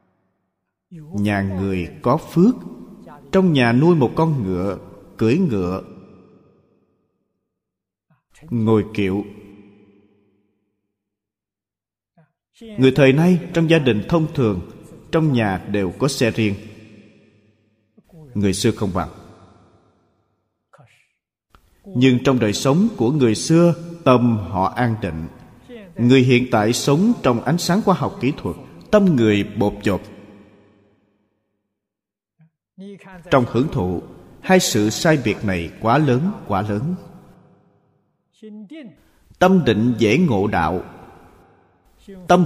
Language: Vietnamese